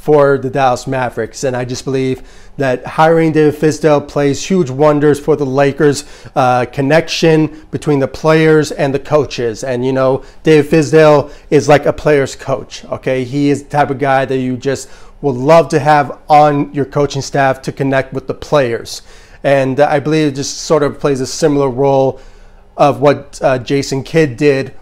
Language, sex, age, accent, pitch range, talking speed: English, male, 30-49, American, 130-150 Hz, 185 wpm